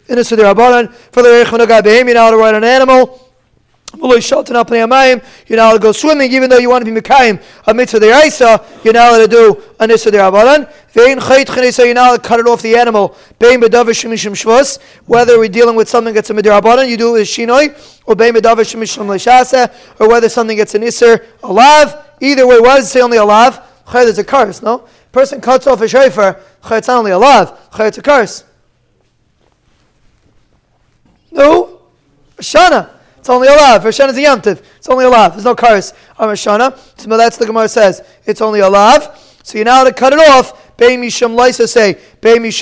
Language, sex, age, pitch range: English, male, 20-39, 220-260 Hz